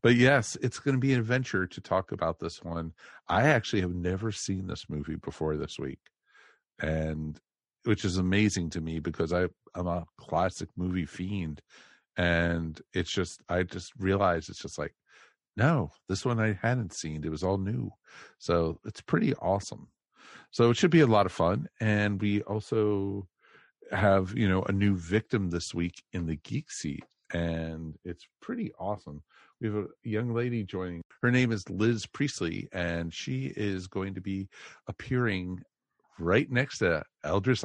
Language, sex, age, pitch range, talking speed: English, male, 50-69, 85-110 Hz, 170 wpm